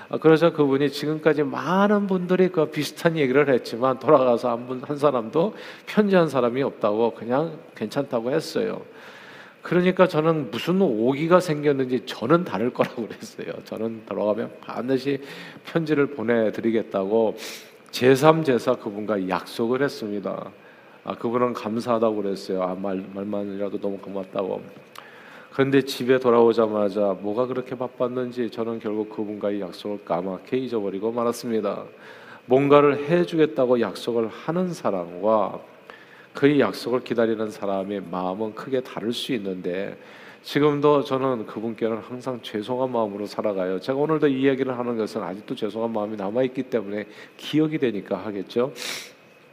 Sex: male